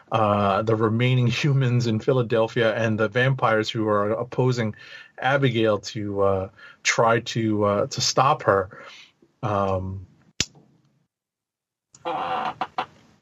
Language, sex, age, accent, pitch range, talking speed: English, male, 30-49, American, 110-135 Hz, 100 wpm